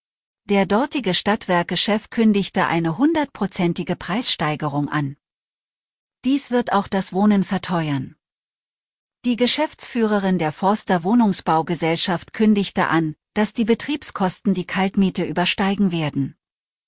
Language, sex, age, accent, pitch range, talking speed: German, female, 40-59, German, 170-215 Hz, 100 wpm